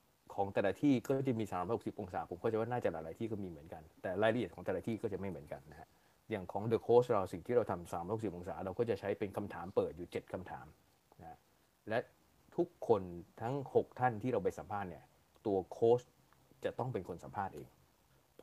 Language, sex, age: Thai, male, 20-39